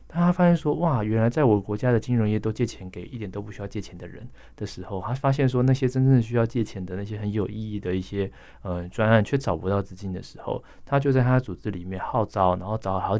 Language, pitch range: Chinese, 95-120 Hz